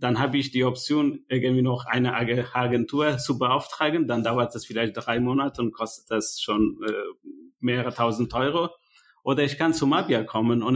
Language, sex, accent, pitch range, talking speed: German, male, German, 115-135 Hz, 175 wpm